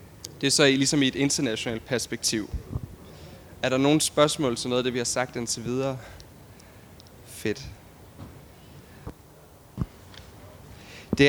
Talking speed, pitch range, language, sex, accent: 120 wpm, 115-140 Hz, Danish, male, native